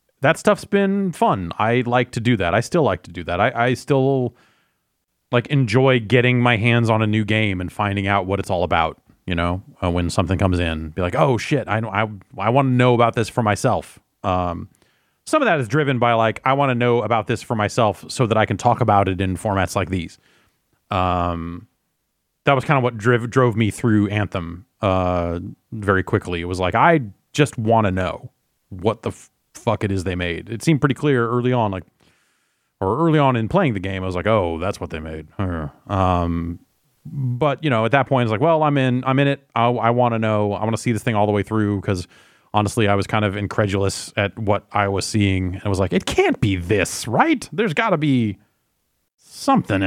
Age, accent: 30-49, American